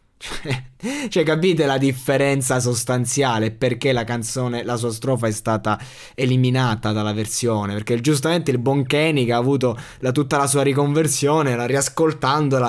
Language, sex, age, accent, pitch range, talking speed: Italian, male, 20-39, native, 110-135 Hz, 145 wpm